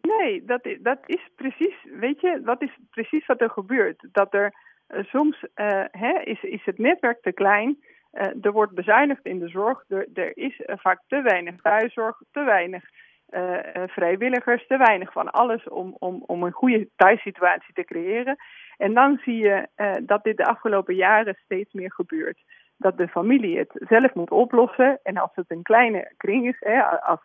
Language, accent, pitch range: Dutch, Dutch, 195-280 Hz